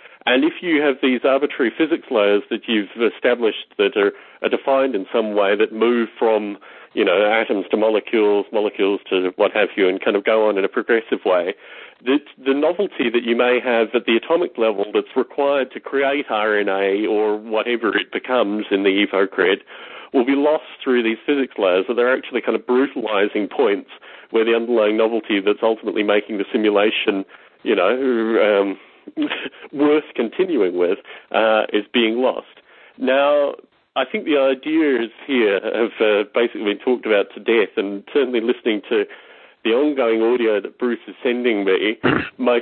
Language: English